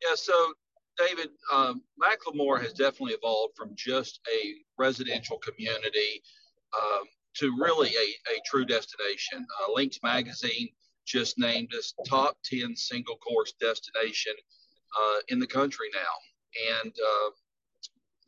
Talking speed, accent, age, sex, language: 120 wpm, American, 50-69, male, English